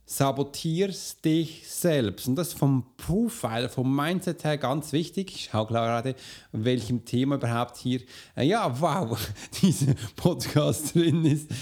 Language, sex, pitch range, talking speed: German, male, 120-160 Hz, 140 wpm